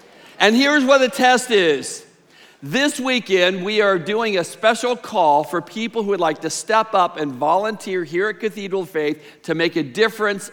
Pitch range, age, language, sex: 200-255 Hz, 50-69, English, male